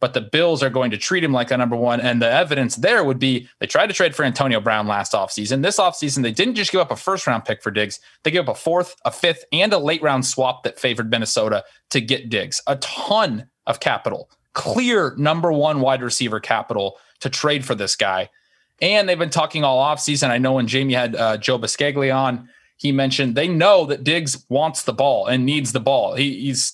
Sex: male